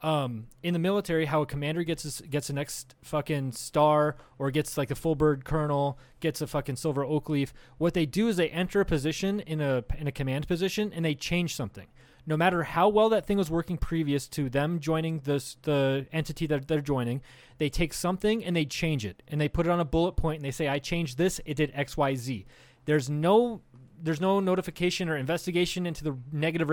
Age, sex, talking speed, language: 20-39, male, 220 wpm, English